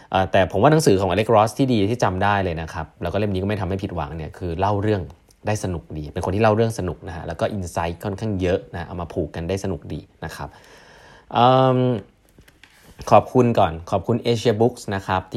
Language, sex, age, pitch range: Thai, male, 20-39, 85-110 Hz